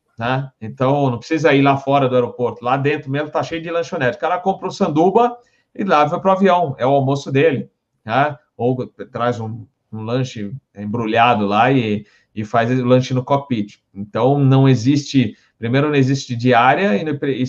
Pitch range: 125-160 Hz